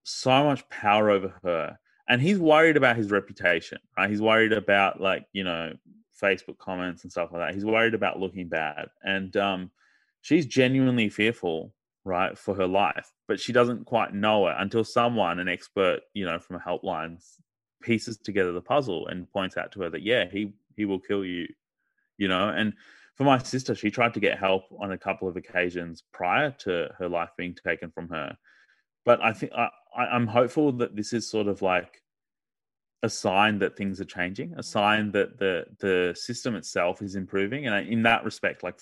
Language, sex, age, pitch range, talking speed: English, male, 20-39, 90-115 Hz, 195 wpm